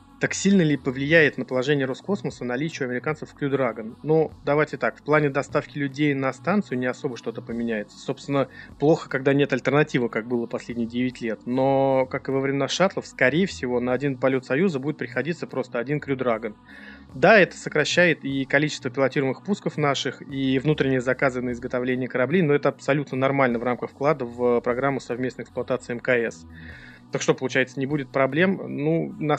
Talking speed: 175 wpm